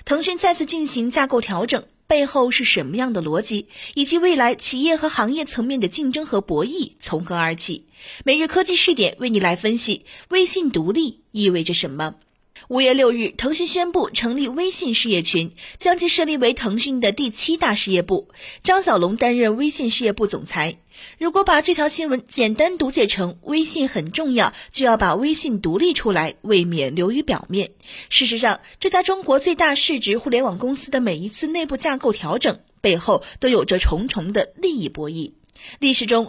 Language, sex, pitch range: Chinese, female, 200-310 Hz